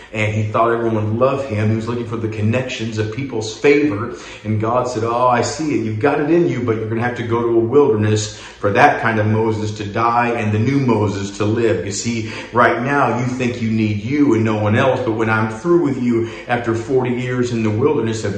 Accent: American